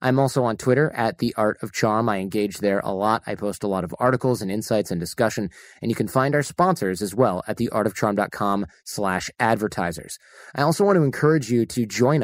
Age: 30-49